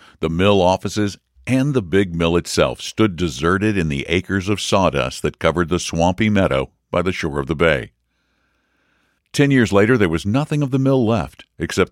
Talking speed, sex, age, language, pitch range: 185 wpm, male, 60-79, English, 75-110 Hz